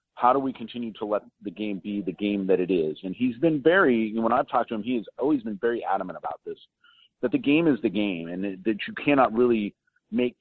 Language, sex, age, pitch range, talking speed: English, male, 40-59, 105-135 Hz, 250 wpm